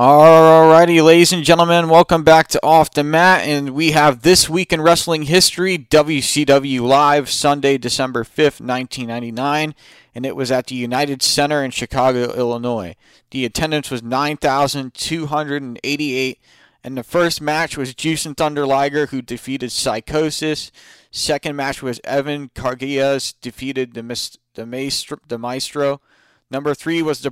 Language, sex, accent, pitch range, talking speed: English, male, American, 130-150 Hz, 135 wpm